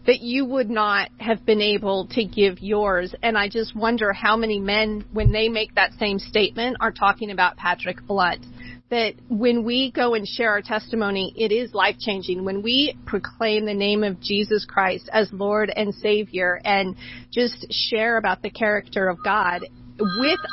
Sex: female